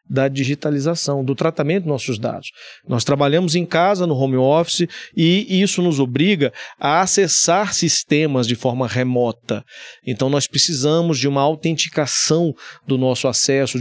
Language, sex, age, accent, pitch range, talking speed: Portuguese, male, 40-59, Brazilian, 130-175 Hz, 145 wpm